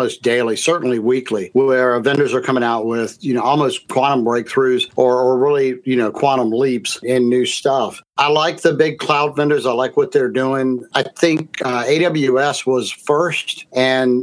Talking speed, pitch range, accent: 175 wpm, 125-150 Hz, American